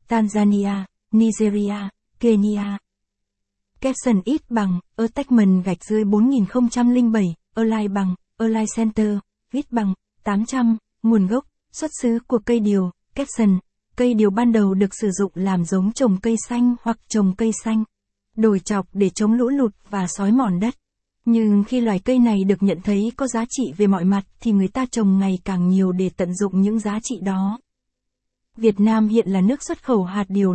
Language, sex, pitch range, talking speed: Vietnamese, female, 195-235 Hz, 180 wpm